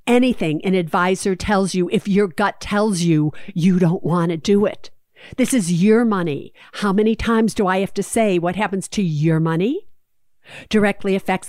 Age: 50-69